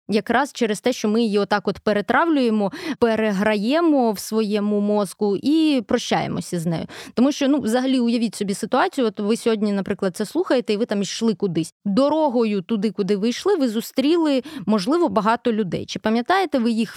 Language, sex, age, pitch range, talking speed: Ukrainian, female, 20-39, 200-260 Hz, 175 wpm